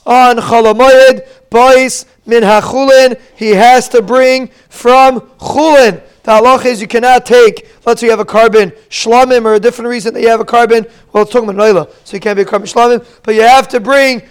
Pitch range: 220-255 Hz